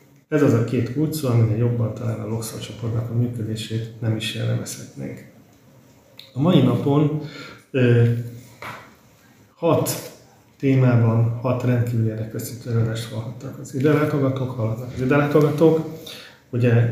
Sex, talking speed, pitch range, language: male, 115 wpm, 115-130 Hz, Hungarian